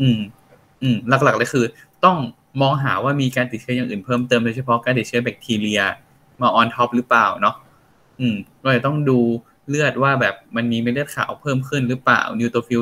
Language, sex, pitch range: Thai, male, 115-135 Hz